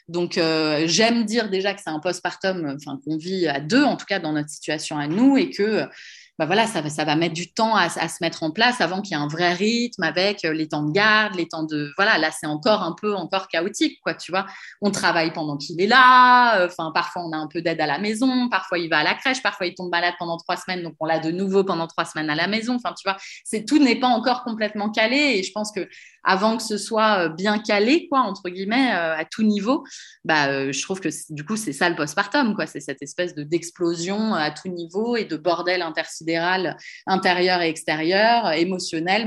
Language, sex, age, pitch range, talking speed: French, female, 20-39, 170-220 Hz, 250 wpm